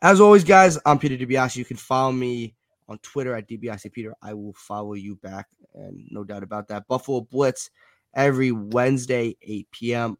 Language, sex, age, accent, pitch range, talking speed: English, male, 20-39, American, 105-135 Hz, 180 wpm